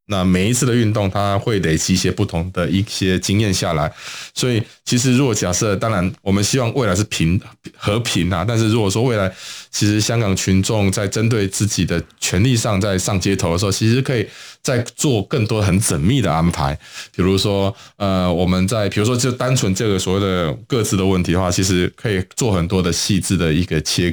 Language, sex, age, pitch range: Chinese, male, 20-39, 90-110 Hz